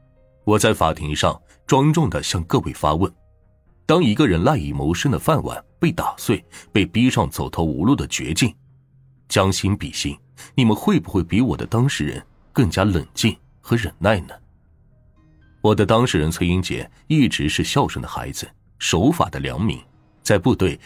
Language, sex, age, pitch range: Chinese, male, 30-49, 85-120 Hz